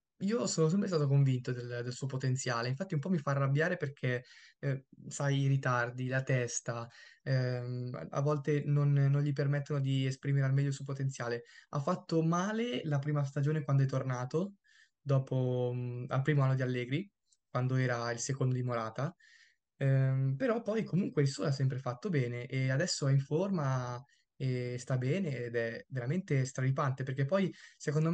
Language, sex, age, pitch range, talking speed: Italian, male, 20-39, 130-150 Hz, 175 wpm